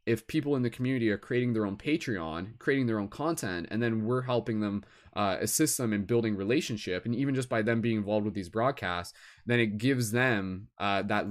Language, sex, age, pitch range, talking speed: English, male, 20-39, 105-125 Hz, 220 wpm